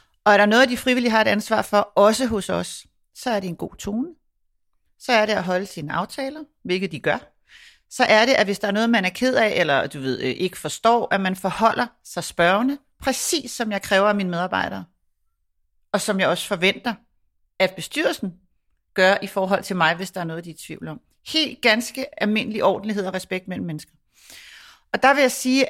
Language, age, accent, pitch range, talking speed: Danish, 40-59, native, 185-225 Hz, 215 wpm